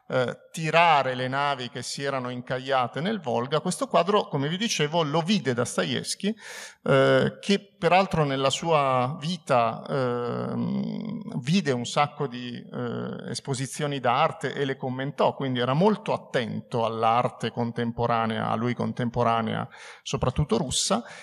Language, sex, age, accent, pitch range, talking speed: Italian, male, 50-69, native, 125-175 Hz, 130 wpm